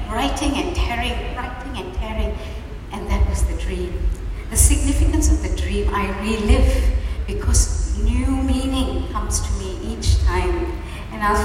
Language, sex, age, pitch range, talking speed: English, female, 60-79, 80-95 Hz, 145 wpm